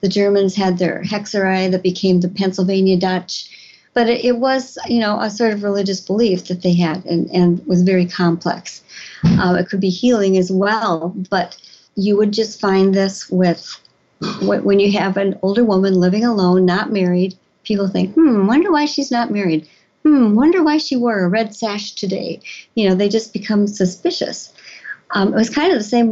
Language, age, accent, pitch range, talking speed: English, 50-69, American, 185-220 Hz, 190 wpm